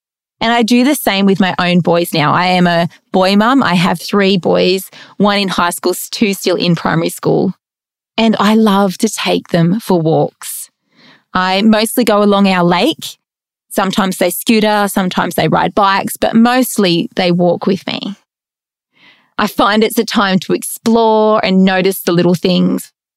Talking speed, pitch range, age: 175 wpm, 180-225 Hz, 20-39